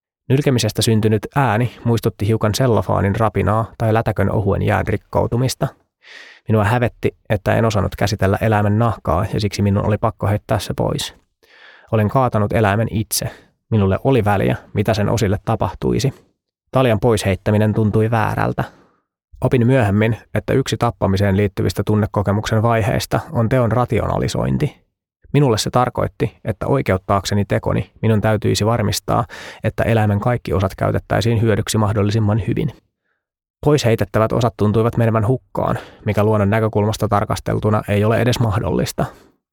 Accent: native